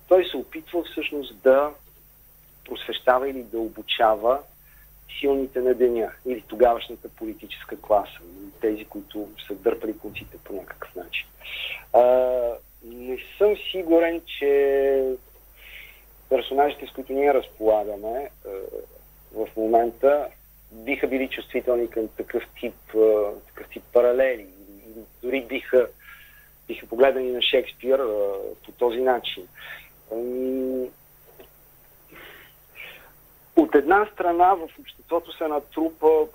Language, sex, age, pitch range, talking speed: Bulgarian, male, 40-59, 125-175 Hz, 100 wpm